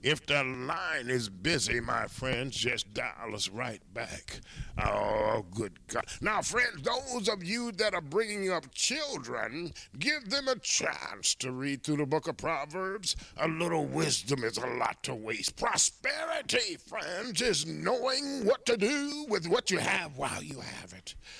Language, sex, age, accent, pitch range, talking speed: English, male, 50-69, American, 120-195 Hz, 165 wpm